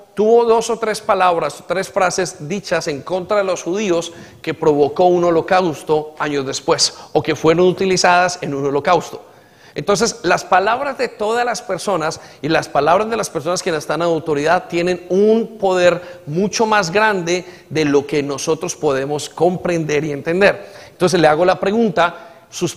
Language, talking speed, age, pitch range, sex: Spanish, 165 wpm, 40-59, 165-205 Hz, male